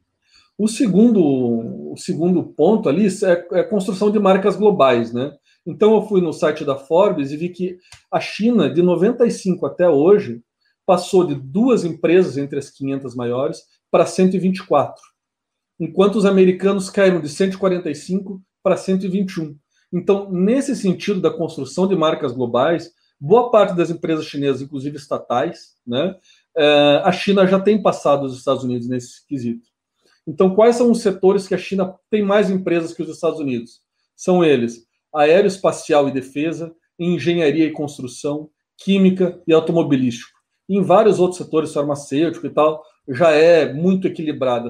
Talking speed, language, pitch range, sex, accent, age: 150 wpm, Portuguese, 140-190 Hz, male, Brazilian, 40-59